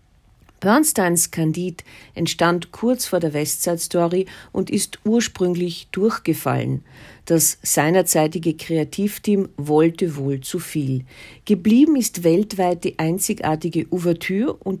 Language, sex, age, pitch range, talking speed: German, female, 50-69, 150-195 Hz, 105 wpm